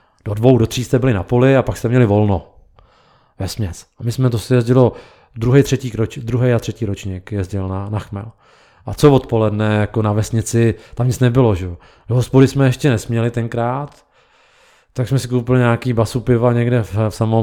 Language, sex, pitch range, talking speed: Czech, male, 105-125 Hz, 200 wpm